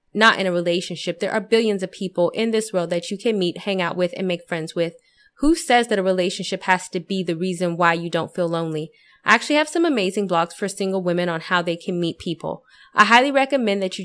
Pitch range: 175-215 Hz